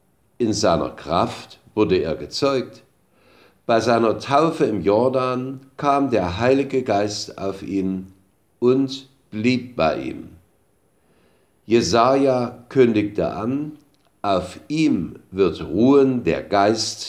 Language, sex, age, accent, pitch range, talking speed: German, male, 50-69, German, 95-130 Hz, 105 wpm